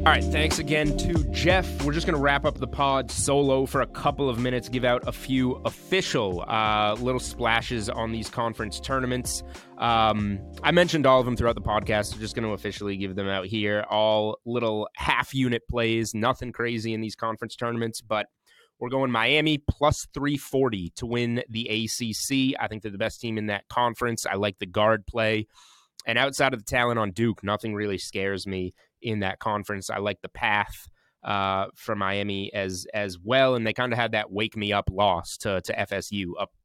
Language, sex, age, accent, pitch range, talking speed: English, male, 20-39, American, 105-125 Hz, 200 wpm